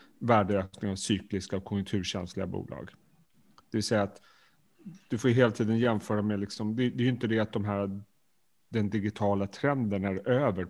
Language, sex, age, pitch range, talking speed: Swedish, male, 30-49, 100-125 Hz, 180 wpm